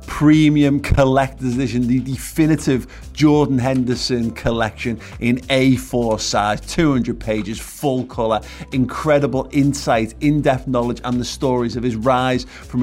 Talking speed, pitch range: 120 wpm, 110-130 Hz